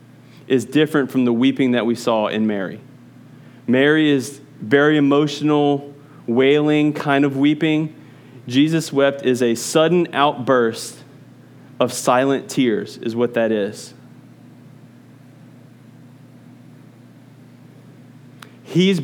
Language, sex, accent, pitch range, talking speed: English, male, American, 125-150 Hz, 100 wpm